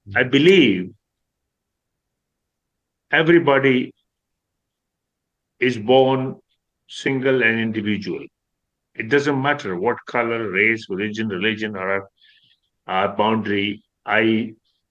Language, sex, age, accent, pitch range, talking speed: English, male, 50-69, Indian, 110-140 Hz, 85 wpm